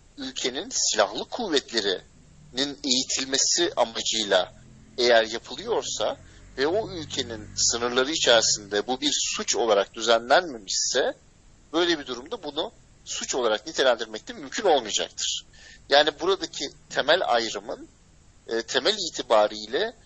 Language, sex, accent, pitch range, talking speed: Turkish, male, native, 115-155 Hz, 95 wpm